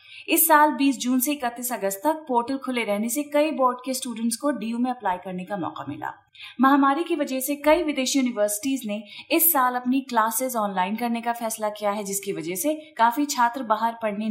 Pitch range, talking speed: 210-270 Hz, 205 wpm